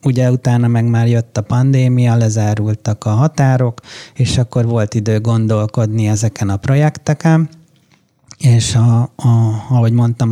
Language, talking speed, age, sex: Hungarian, 135 wpm, 30-49, male